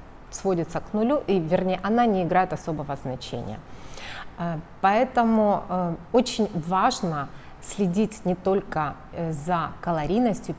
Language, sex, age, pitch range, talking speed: Russian, female, 30-49, 160-215 Hz, 100 wpm